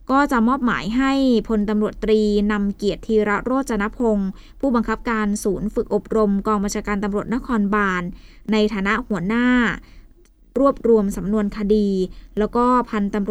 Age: 20-39